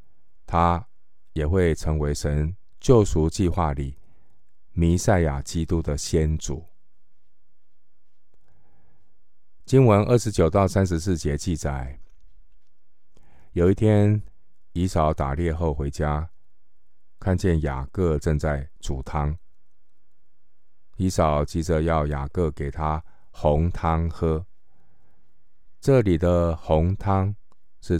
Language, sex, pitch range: Chinese, male, 75-90 Hz